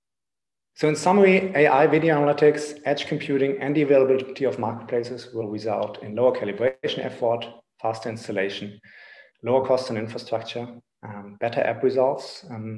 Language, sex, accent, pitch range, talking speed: English, male, German, 110-135 Hz, 140 wpm